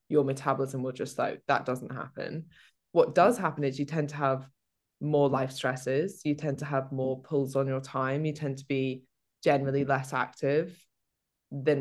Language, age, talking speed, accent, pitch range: English, 20-39, 185 wpm, British, 135-155 Hz